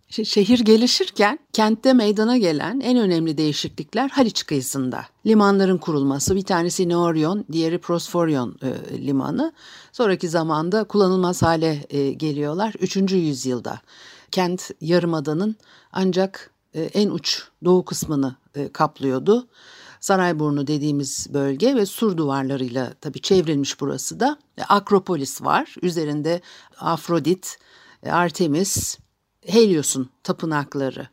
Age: 60-79